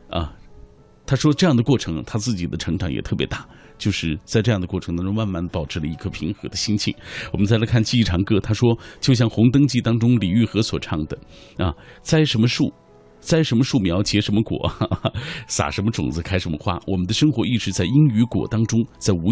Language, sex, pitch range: Chinese, male, 95-125 Hz